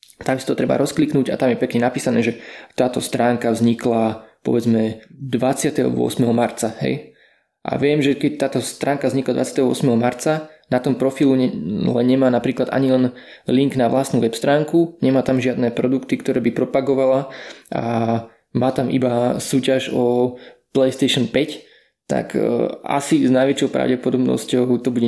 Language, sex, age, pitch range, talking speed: Slovak, male, 20-39, 120-140 Hz, 145 wpm